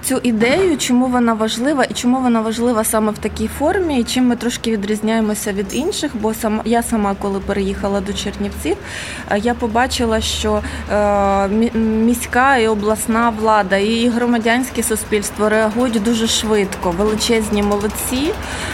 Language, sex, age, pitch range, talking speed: Ukrainian, female, 20-39, 210-245 Hz, 140 wpm